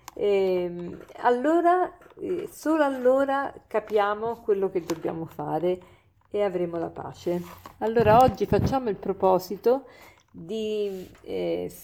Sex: female